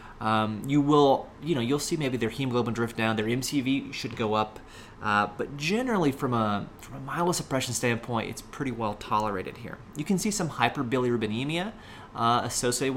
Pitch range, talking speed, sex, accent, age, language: 110-135 Hz, 175 wpm, male, American, 30-49, English